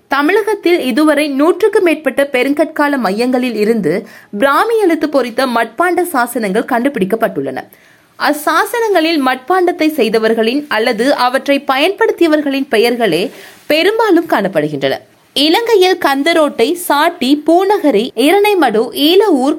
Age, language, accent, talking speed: 20-39, Tamil, native, 85 wpm